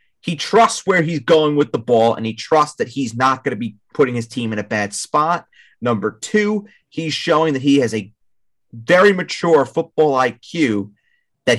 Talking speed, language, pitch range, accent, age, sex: 190 wpm, English, 120-175 Hz, American, 30-49, male